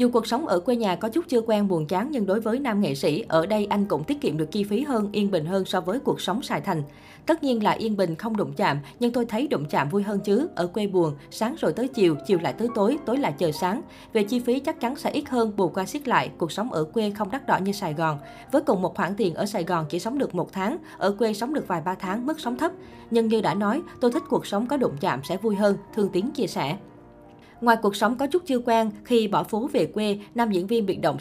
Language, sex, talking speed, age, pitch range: Vietnamese, female, 285 wpm, 20-39, 180-235 Hz